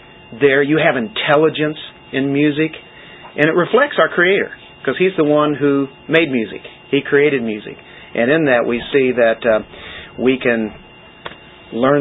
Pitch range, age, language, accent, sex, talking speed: 120-140 Hz, 40-59, English, American, male, 155 wpm